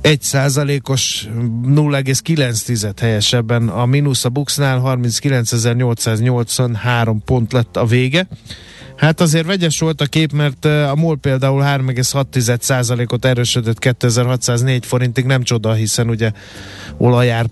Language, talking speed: Hungarian, 105 wpm